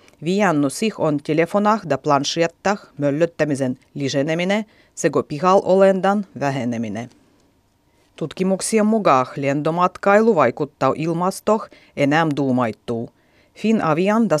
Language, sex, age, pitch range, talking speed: Finnish, female, 30-49, 140-185 Hz, 80 wpm